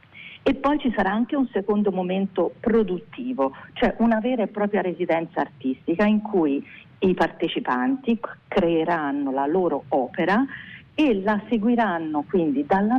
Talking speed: 135 wpm